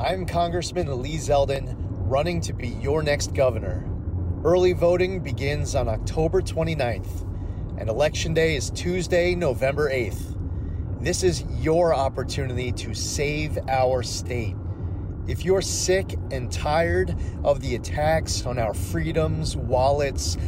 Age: 30-49